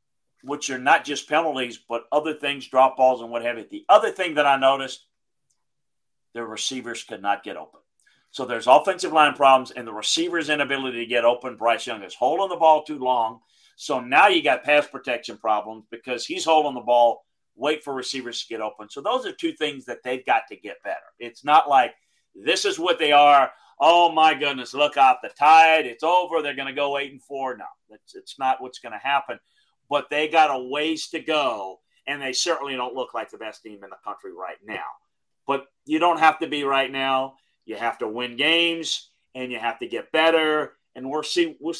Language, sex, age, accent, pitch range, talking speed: English, male, 40-59, American, 120-155 Hz, 215 wpm